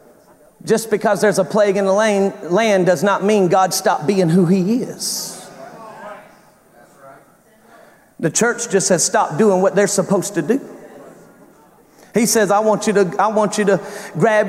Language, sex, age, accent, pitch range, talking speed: English, male, 40-59, American, 170-210 Hz, 165 wpm